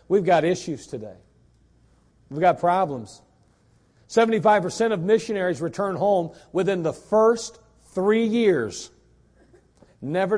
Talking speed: 110 wpm